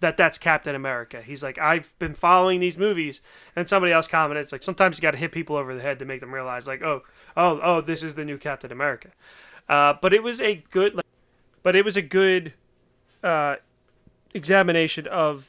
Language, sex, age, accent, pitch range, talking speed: English, male, 30-49, American, 145-180 Hz, 210 wpm